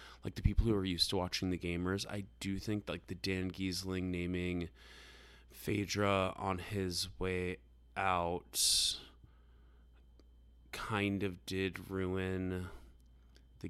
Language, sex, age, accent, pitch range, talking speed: English, male, 20-39, American, 85-105 Hz, 125 wpm